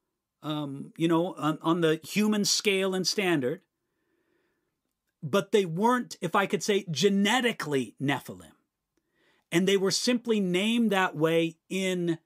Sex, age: male, 40-59